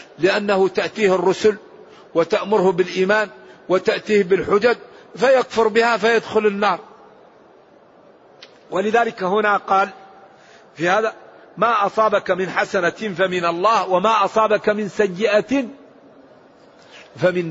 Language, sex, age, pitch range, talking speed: Arabic, male, 50-69, 185-220 Hz, 95 wpm